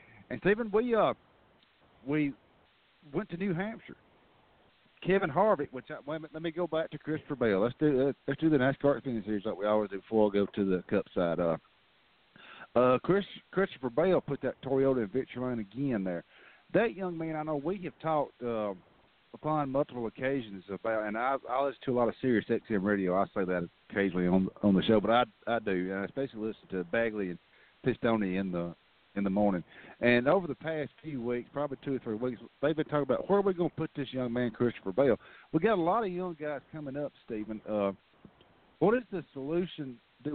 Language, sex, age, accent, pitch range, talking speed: English, male, 50-69, American, 115-155 Hz, 210 wpm